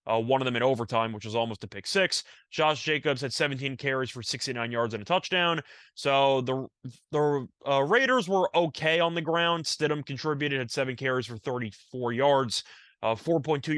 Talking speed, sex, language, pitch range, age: 185 wpm, male, English, 125-150 Hz, 20-39